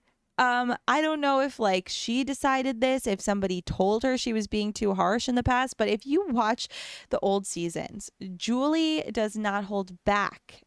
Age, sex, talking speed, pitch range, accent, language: 20-39, female, 185 wpm, 185-250 Hz, American, English